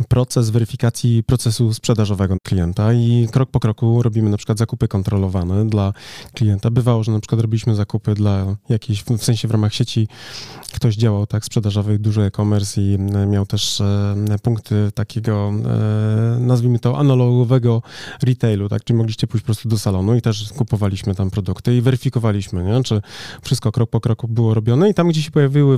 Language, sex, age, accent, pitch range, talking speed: Polish, male, 20-39, native, 105-125 Hz, 175 wpm